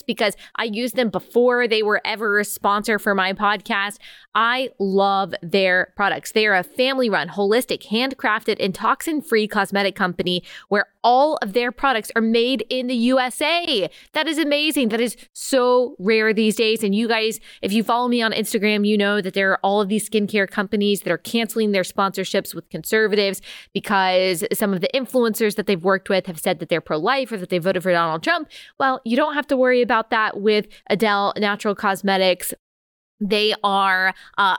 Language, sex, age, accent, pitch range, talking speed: English, female, 20-39, American, 195-235 Hz, 185 wpm